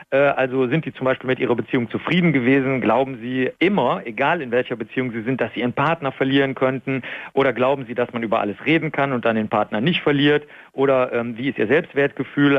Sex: male